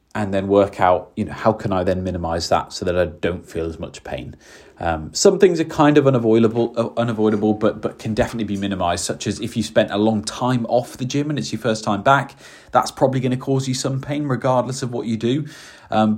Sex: male